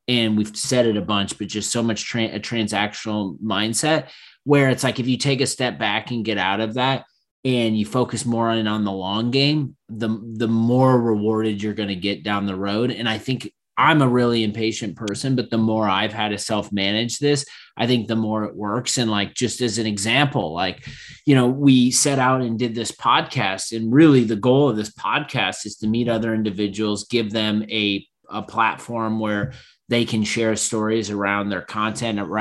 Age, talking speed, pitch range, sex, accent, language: 30-49, 205 wpm, 105-125 Hz, male, American, English